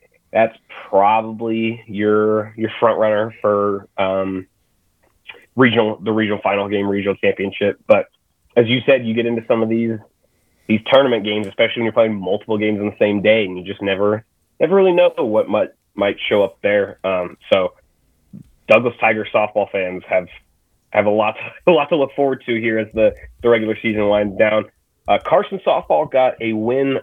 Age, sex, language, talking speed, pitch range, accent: 30-49, male, English, 180 wpm, 100-115 Hz, American